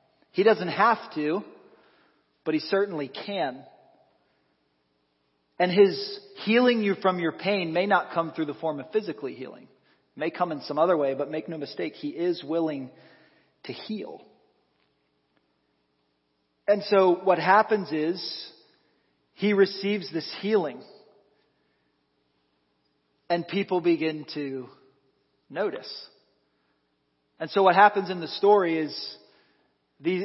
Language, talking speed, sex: English, 125 wpm, male